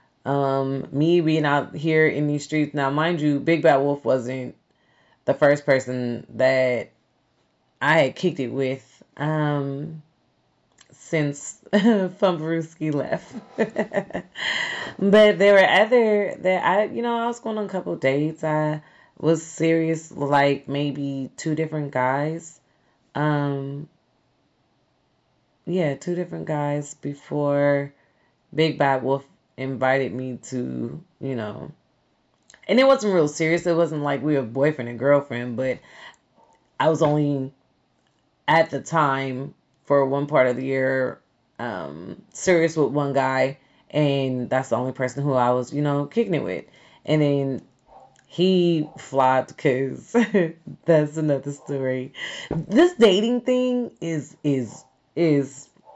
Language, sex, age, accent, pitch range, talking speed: English, female, 30-49, American, 135-160 Hz, 135 wpm